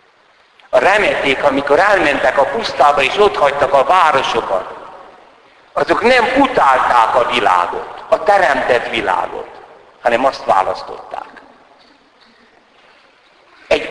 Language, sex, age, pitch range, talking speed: Hungarian, male, 60-79, 130-210 Hz, 95 wpm